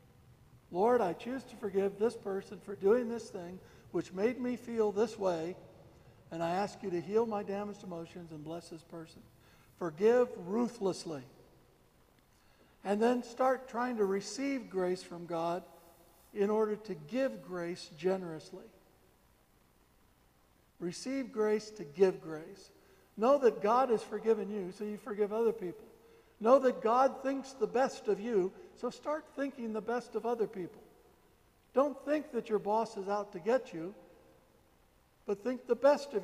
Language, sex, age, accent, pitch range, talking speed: English, male, 60-79, American, 180-235 Hz, 155 wpm